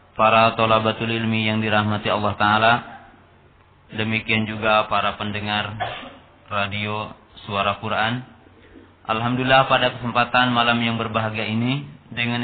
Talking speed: 105 wpm